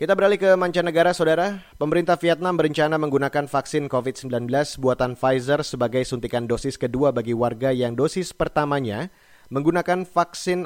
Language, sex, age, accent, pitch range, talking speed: Indonesian, male, 30-49, native, 125-170 Hz, 135 wpm